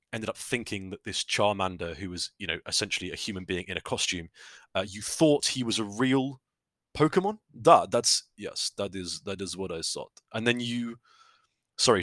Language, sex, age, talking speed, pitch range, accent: English, male, 30-49, 195 wpm, 95-120 Hz, British